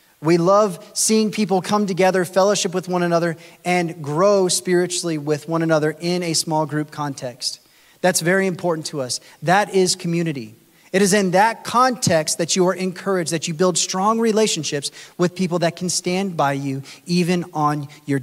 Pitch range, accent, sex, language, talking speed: 155-190 Hz, American, male, English, 175 wpm